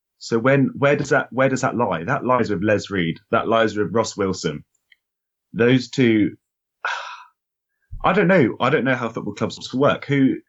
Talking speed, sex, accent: 185 wpm, male, British